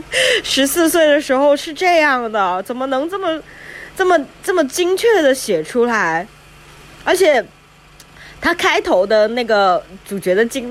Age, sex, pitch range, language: 20-39, female, 230-330 Hz, Chinese